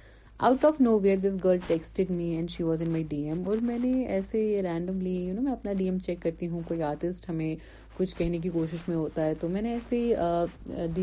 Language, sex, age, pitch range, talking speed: Urdu, female, 30-49, 175-255 Hz, 115 wpm